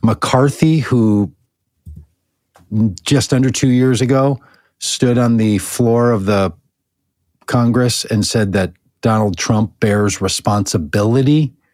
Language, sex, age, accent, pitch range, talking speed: English, male, 50-69, American, 105-135 Hz, 105 wpm